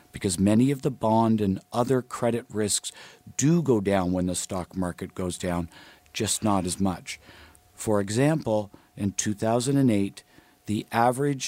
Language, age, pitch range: English, 50-69, 100-120 Hz